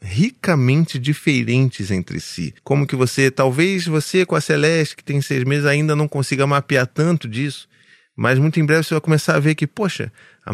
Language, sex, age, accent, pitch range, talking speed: Portuguese, male, 30-49, Brazilian, 125-170 Hz, 195 wpm